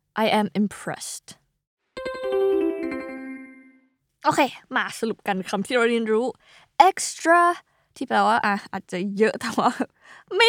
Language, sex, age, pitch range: Thai, female, 20-39, 190-260 Hz